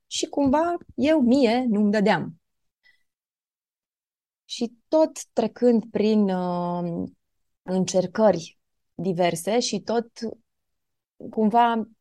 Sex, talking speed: female, 80 wpm